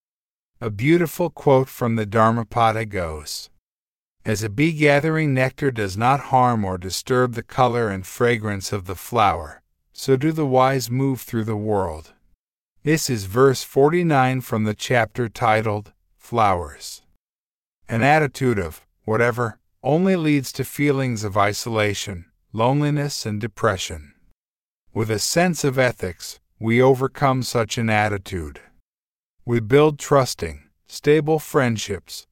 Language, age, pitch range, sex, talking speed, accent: English, 50-69, 105-135 Hz, male, 125 wpm, American